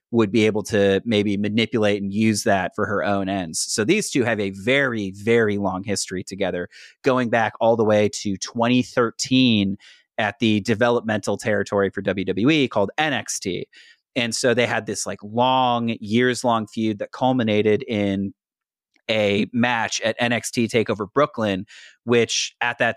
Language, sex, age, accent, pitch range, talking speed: English, male, 30-49, American, 105-120 Hz, 155 wpm